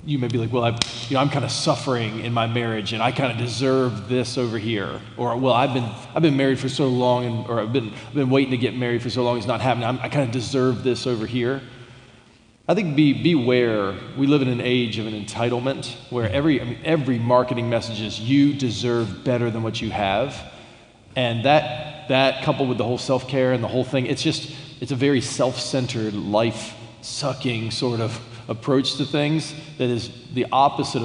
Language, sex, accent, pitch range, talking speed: English, male, American, 115-140 Hz, 215 wpm